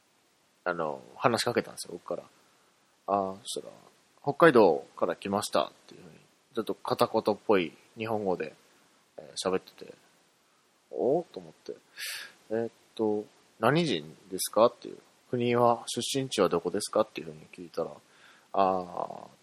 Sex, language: male, Japanese